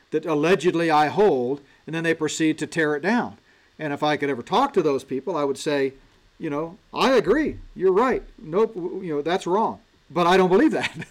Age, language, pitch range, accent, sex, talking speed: 40-59, English, 135-170 Hz, American, male, 215 wpm